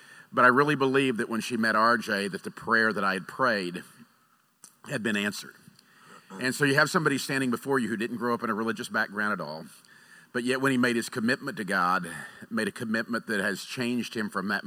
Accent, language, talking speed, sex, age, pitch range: American, English, 225 wpm, male, 50-69, 95-120 Hz